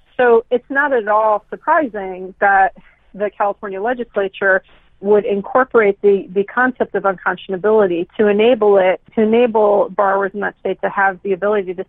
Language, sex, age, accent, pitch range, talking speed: English, female, 40-59, American, 185-215 Hz, 155 wpm